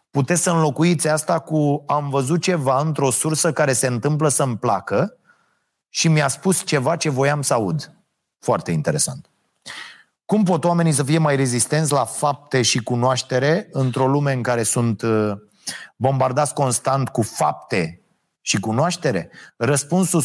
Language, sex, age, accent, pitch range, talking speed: Romanian, male, 30-49, native, 120-155 Hz, 140 wpm